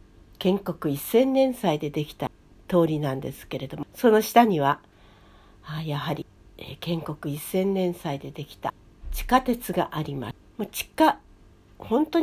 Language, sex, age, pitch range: Japanese, female, 60-79, 145-235 Hz